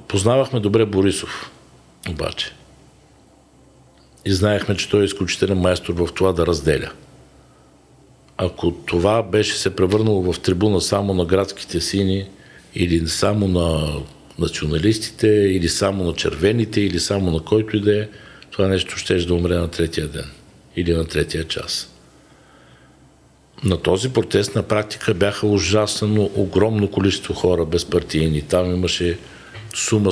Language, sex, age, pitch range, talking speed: Bulgarian, male, 60-79, 85-105 Hz, 130 wpm